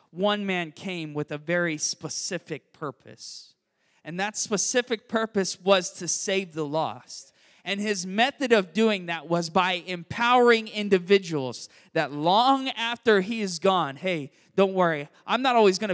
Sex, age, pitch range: male, 20-39, 150-200 Hz